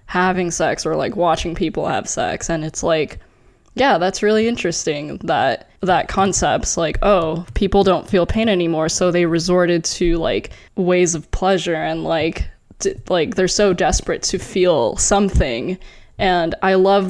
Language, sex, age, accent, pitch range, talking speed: English, female, 10-29, American, 180-230 Hz, 160 wpm